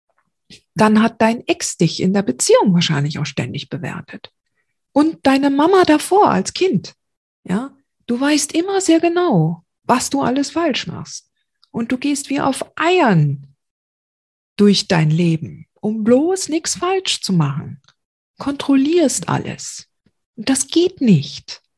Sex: female